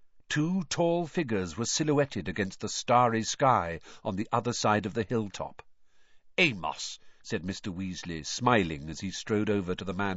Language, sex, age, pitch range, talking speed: English, male, 50-69, 95-145 Hz, 165 wpm